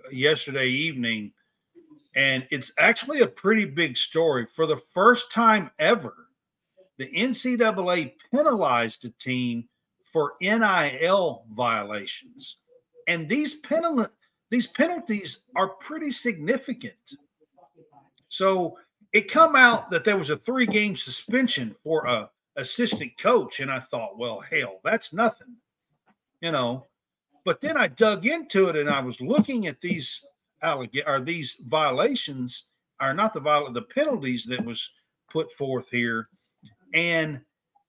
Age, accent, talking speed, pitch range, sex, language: 50-69, American, 130 wpm, 150-255 Hz, male, English